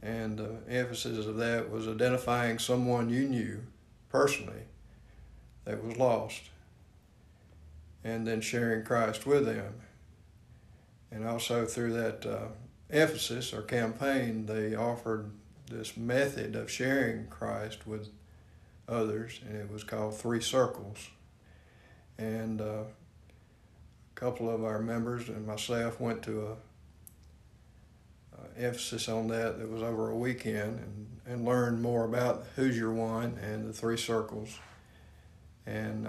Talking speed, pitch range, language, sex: 125 wpm, 105-120 Hz, English, male